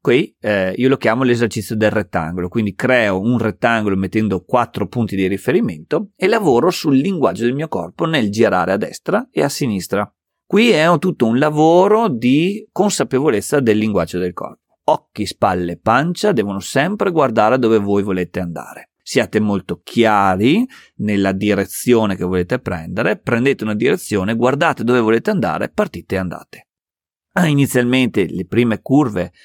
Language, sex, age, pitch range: Italian, male, 30-49, 95-130 Hz